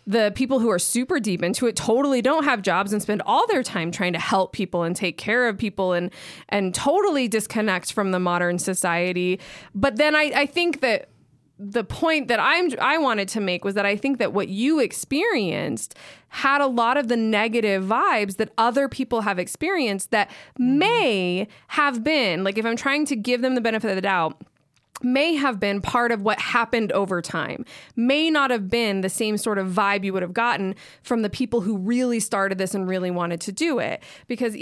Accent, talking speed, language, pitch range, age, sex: American, 210 wpm, English, 190-250 Hz, 20-39, female